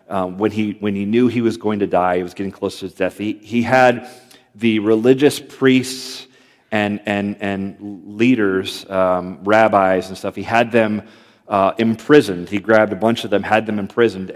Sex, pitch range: male, 100-120 Hz